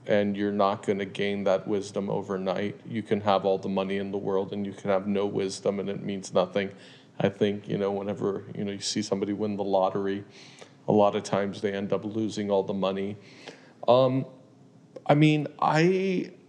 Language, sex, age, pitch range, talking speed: English, male, 40-59, 100-110 Hz, 205 wpm